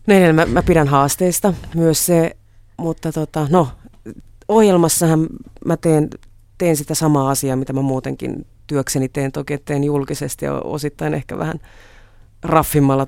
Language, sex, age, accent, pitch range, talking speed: Finnish, female, 30-49, native, 140-160 Hz, 135 wpm